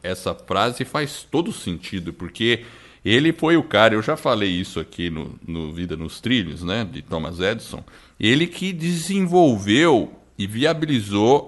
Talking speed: 150 wpm